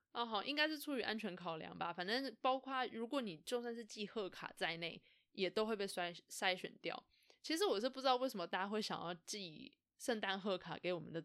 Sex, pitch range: female, 180-245 Hz